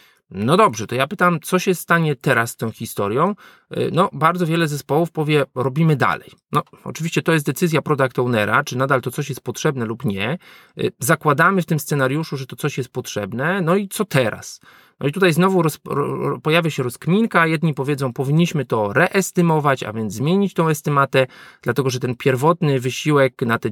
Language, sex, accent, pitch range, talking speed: Polish, male, native, 130-175 Hz, 180 wpm